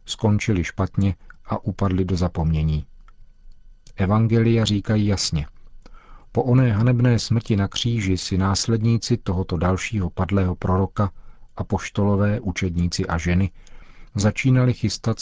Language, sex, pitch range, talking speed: Czech, male, 95-110 Hz, 110 wpm